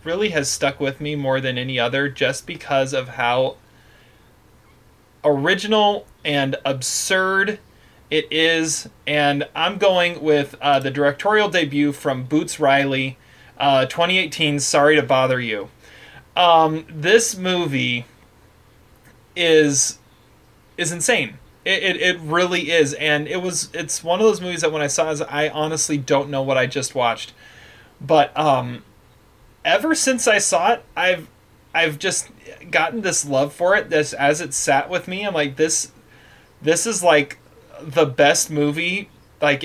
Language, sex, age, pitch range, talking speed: English, male, 30-49, 135-170 Hz, 150 wpm